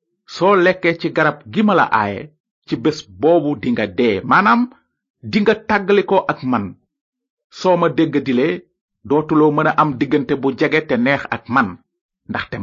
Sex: male